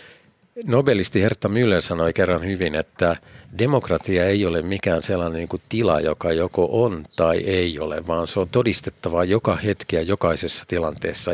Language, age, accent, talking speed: Finnish, 50-69, native, 160 wpm